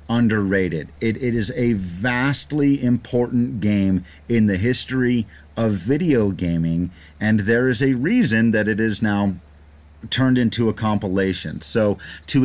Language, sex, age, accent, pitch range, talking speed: English, male, 40-59, American, 90-125 Hz, 140 wpm